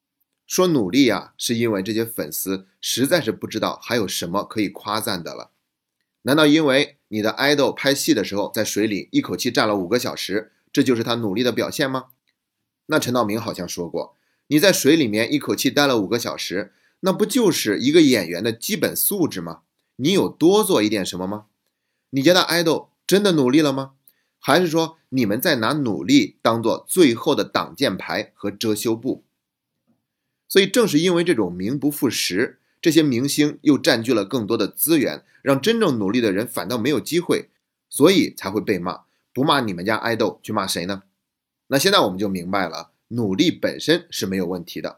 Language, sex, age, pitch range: Chinese, male, 30-49, 105-165 Hz